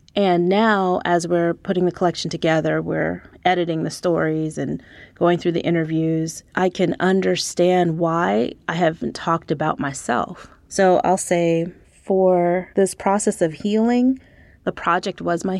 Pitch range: 165-190 Hz